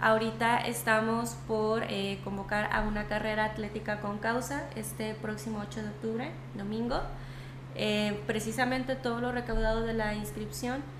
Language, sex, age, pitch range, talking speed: Spanish, female, 20-39, 140-215 Hz, 135 wpm